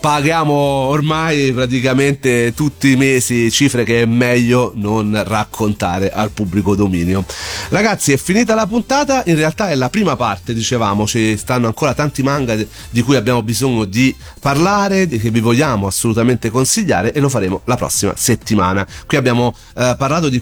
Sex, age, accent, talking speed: male, 40-59, native, 160 wpm